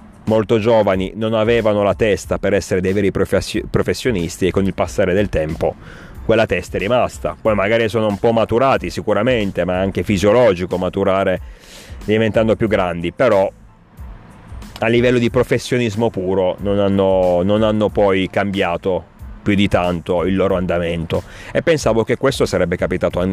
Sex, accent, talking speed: male, native, 155 wpm